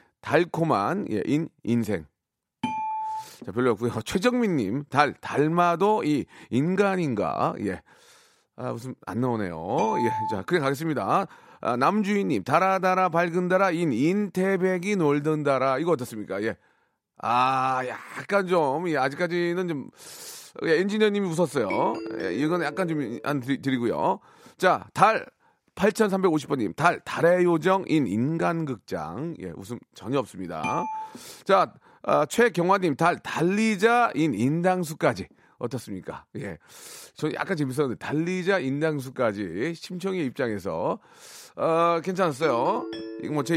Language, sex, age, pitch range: Korean, male, 40-59, 130-190 Hz